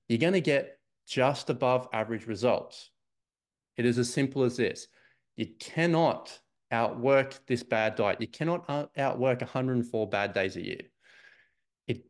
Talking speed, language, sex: 145 wpm, English, male